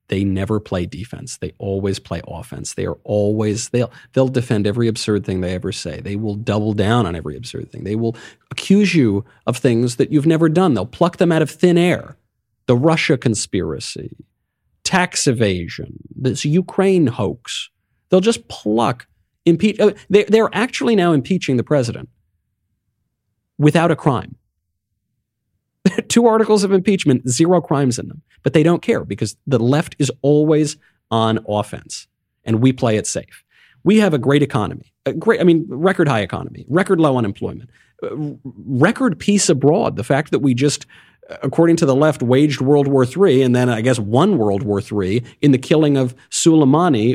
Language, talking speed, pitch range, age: English, 170 wpm, 110-160 Hz, 40-59